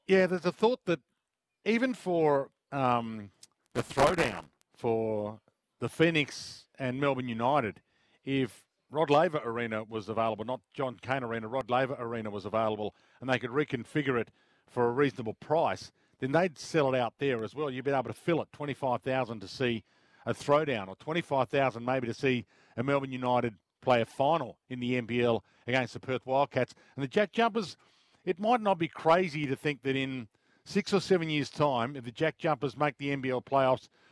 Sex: male